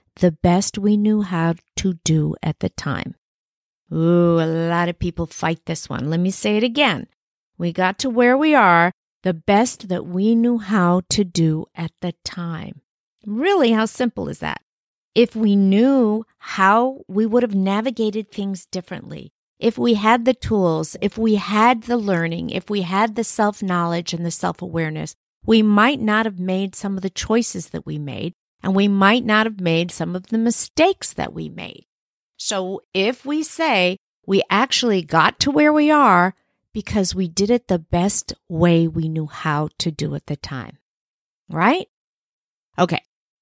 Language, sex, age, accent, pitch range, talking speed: English, female, 50-69, American, 170-225 Hz, 175 wpm